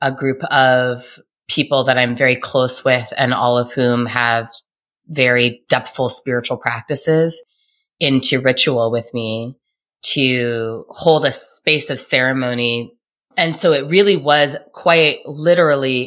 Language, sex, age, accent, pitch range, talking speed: English, female, 20-39, American, 125-155 Hz, 130 wpm